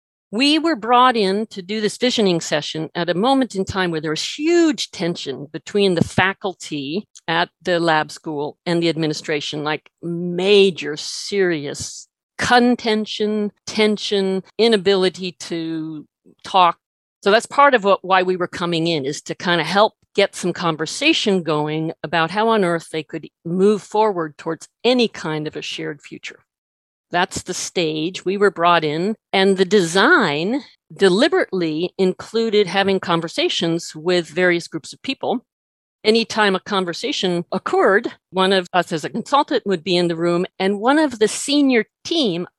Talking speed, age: 155 wpm, 50-69